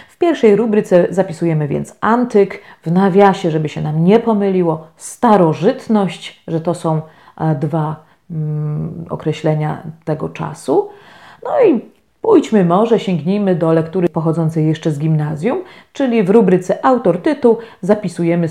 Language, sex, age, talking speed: Polish, female, 40-59, 125 wpm